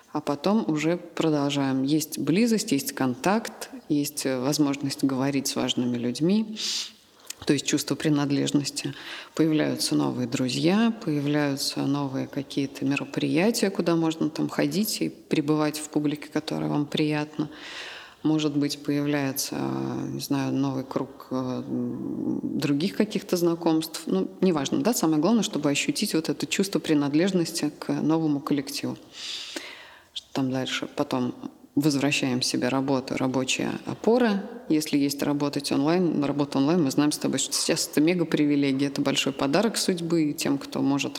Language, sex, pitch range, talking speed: Russian, female, 140-170 Hz, 130 wpm